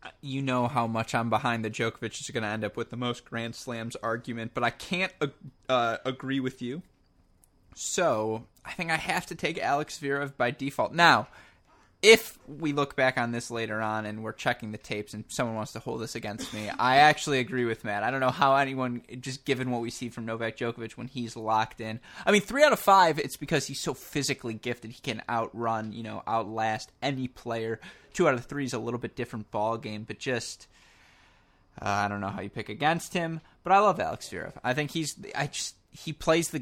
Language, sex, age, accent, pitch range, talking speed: English, male, 20-39, American, 115-140 Hz, 225 wpm